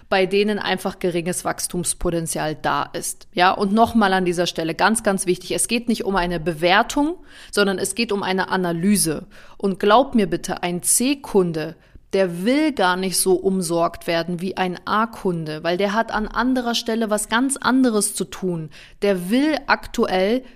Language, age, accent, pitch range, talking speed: German, 30-49, German, 185-225 Hz, 170 wpm